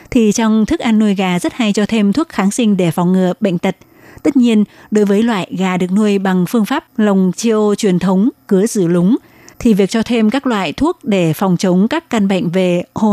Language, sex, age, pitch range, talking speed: Vietnamese, female, 20-39, 185-230 Hz, 235 wpm